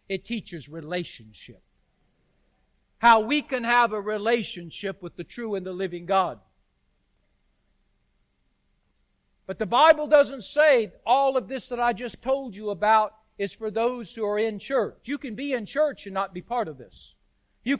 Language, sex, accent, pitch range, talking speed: English, male, American, 215-280 Hz, 165 wpm